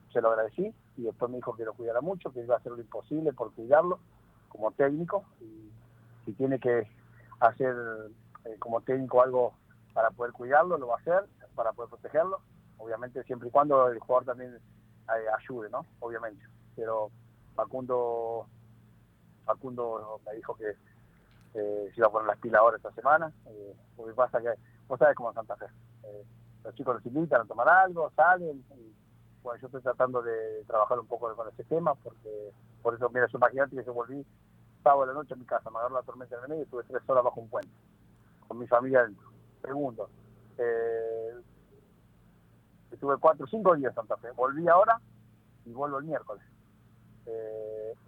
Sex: male